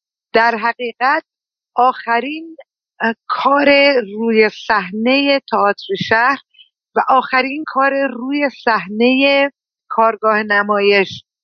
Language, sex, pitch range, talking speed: Persian, female, 195-245 Hz, 80 wpm